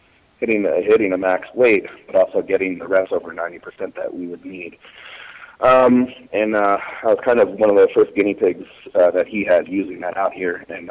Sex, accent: male, American